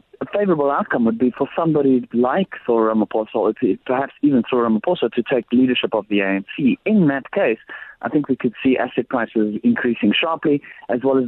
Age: 30-49